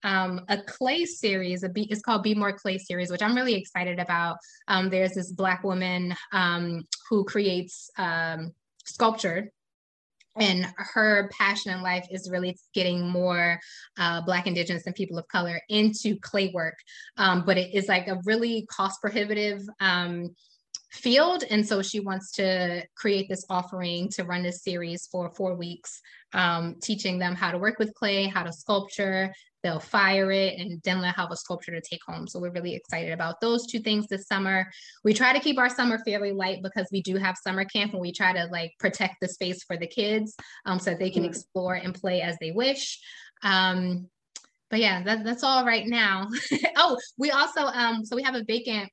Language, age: English, 20-39